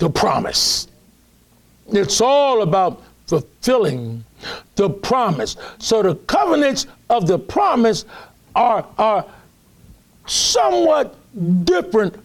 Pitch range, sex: 165-260 Hz, male